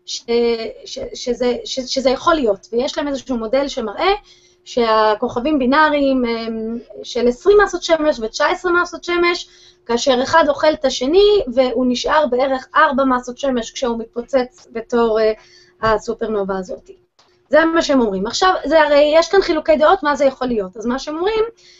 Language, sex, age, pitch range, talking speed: Hebrew, female, 20-39, 235-320 Hz, 155 wpm